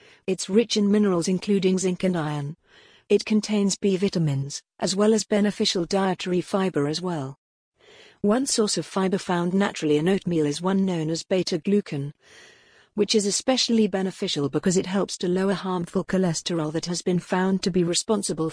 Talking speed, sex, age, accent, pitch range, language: 165 wpm, female, 50-69, British, 175-205 Hz, English